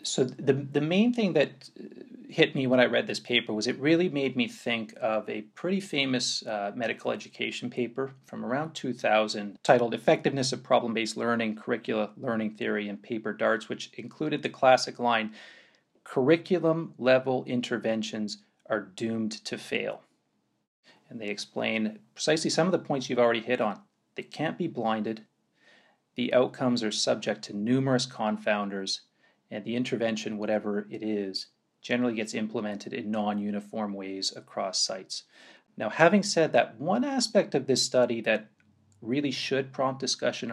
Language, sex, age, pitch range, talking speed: English, male, 40-59, 110-135 Hz, 155 wpm